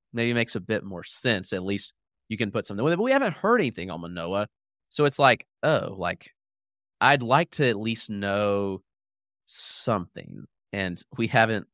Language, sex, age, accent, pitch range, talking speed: English, male, 30-49, American, 95-120 Hz, 190 wpm